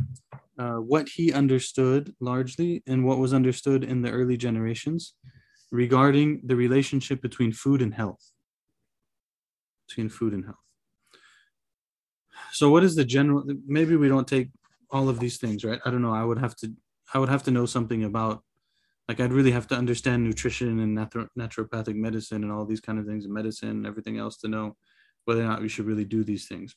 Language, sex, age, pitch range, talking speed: English, male, 20-39, 110-130 Hz, 190 wpm